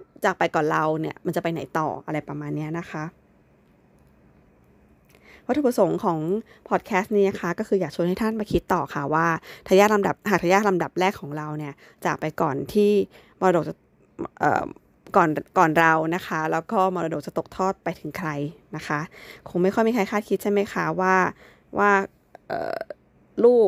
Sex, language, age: female, Thai, 20-39